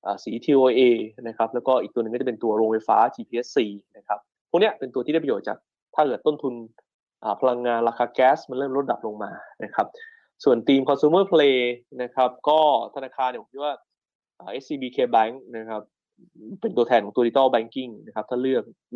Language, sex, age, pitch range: Thai, male, 20-39, 115-135 Hz